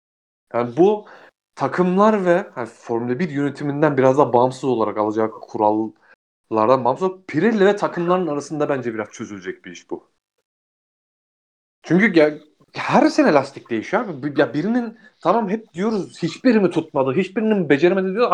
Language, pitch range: Turkish, 135-200 Hz